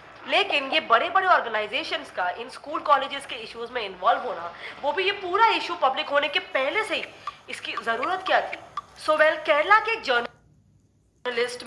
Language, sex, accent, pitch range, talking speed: English, female, Indian, 250-365 Hz, 175 wpm